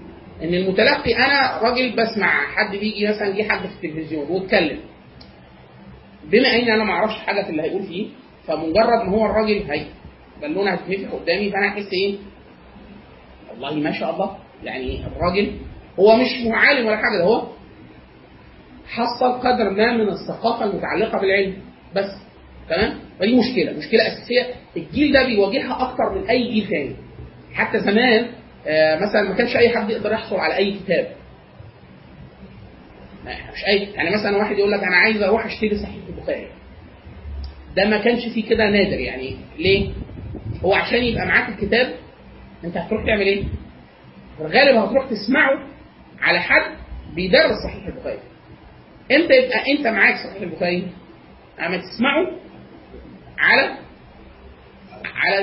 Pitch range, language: 155-225 Hz, Arabic